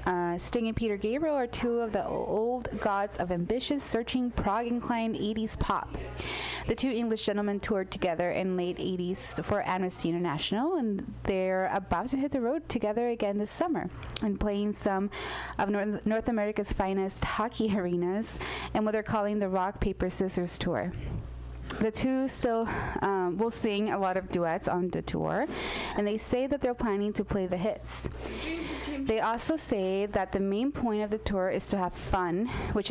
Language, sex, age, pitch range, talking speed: English, female, 20-39, 180-225 Hz, 175 wpm